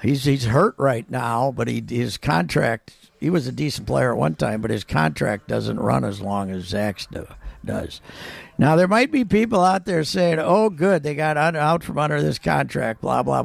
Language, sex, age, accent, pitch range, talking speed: English, male, 60-79, American, 120-160 Hz, 210 wpm